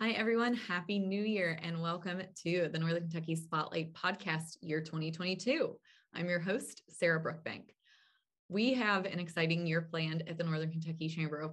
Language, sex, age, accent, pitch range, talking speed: English, female, 20-39, American, 165-195 Hz, 165 wpm